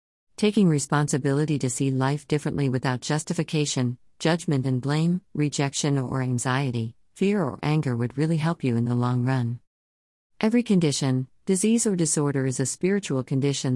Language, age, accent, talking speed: English, 50-69, American, 150 wpm